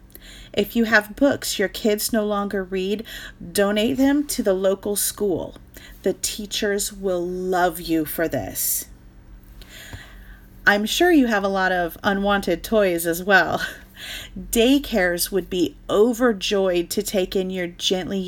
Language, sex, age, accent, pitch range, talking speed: English, female, 40-59, American, 175-215 Hz, 140 wpm